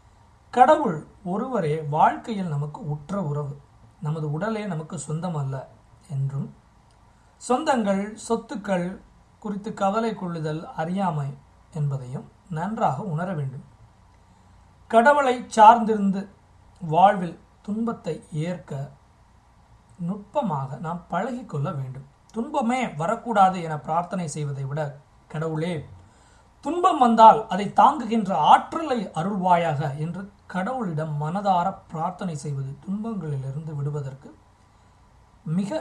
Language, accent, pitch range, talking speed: Tamil, native, 140-200 Hz, 85 wpm